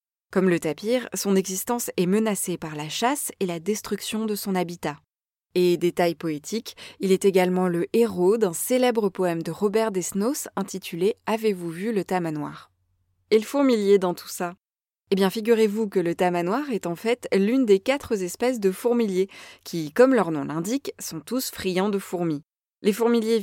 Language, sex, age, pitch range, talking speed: French, female, 20-39, 175-225 Hz, 175 wpm